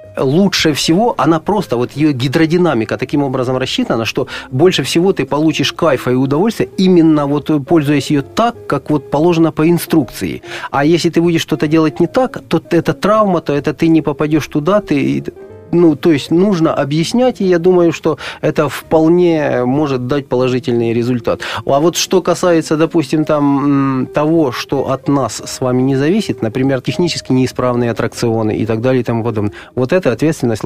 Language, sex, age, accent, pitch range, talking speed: Russian, male, 30-49, native, 120-160 Hz, 170 wpm